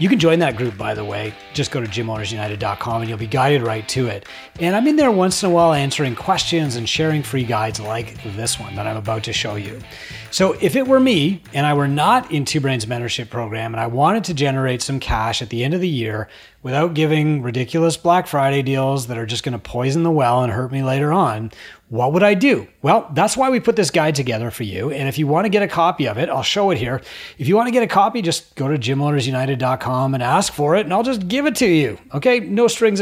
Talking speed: 255 wpm